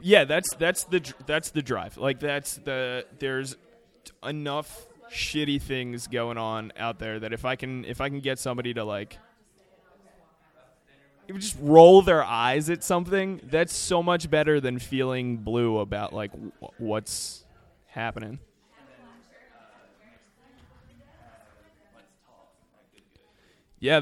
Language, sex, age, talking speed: English, male, 20-39, 115 wpm